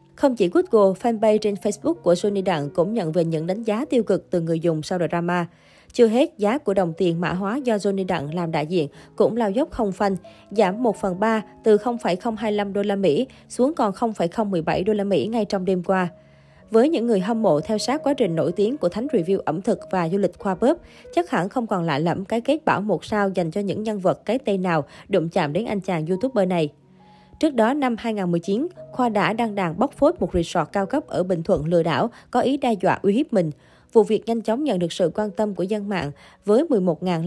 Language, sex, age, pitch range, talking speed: Vietnamese, female, 20-39, 175-230 Hz, 235 wpm